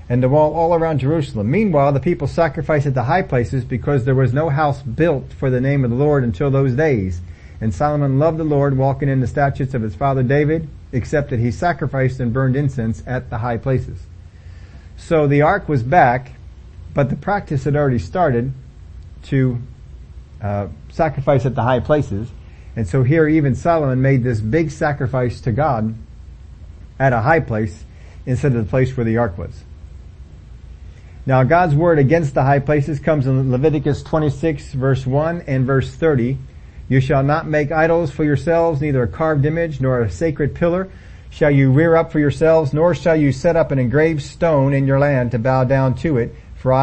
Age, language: 50-69, English